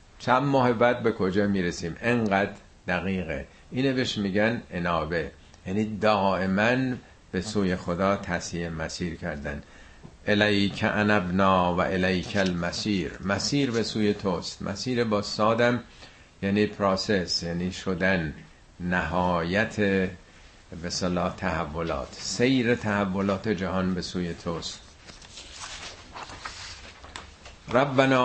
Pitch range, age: 90-115 Hz, 50-69